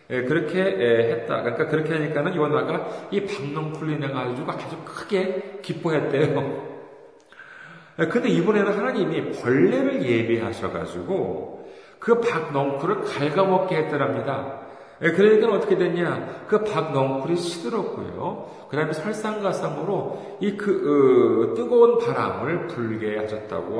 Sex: male